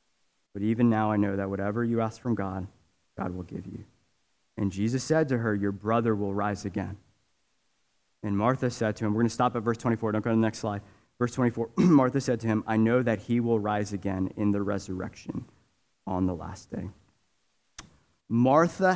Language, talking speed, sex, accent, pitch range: English, 205 wpm, male, American, 105-135 Hz